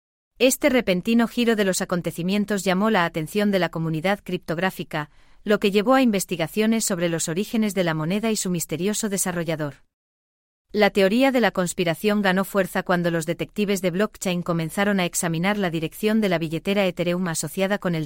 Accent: Spanish